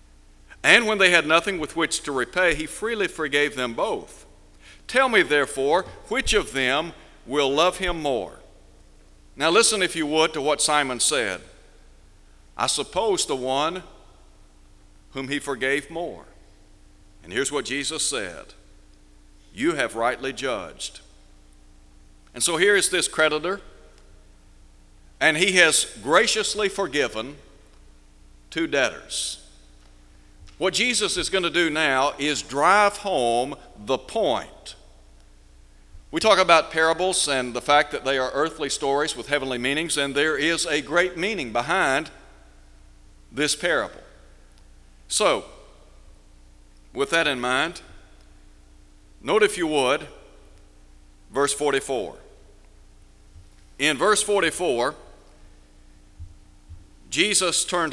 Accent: American